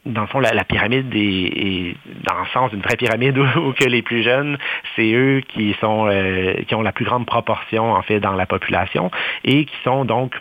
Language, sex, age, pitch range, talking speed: French, male, 40-59, 105-125 Hz, 225 wpm